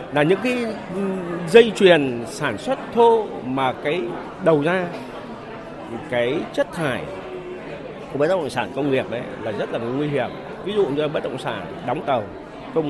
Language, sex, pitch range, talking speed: Vietnamese, male, 135-210 Hz, 165 wpm